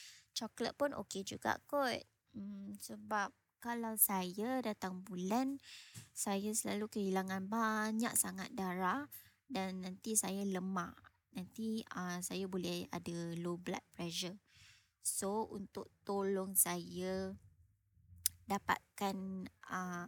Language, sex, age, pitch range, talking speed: Malay, male, 20-39, 180-230 Hz, 110 wpm